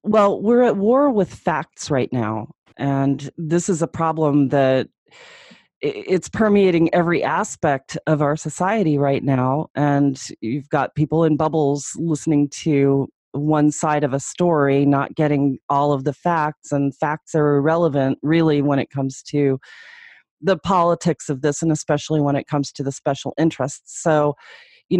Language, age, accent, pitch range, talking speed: English, 40-59, American, 140-170 Hz, 160 wpm